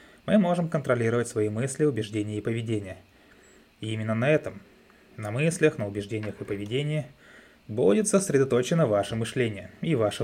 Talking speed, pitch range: 140 wpm, 110-150 Hz